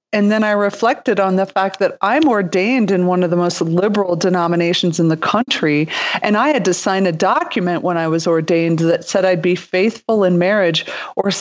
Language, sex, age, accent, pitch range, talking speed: English, female, 40-59, American, 175-230 Hz, 205 wpm